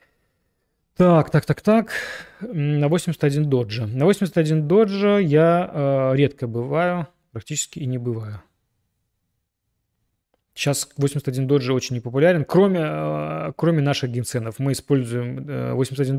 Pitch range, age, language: 120-155 Hz, 20-39, Russian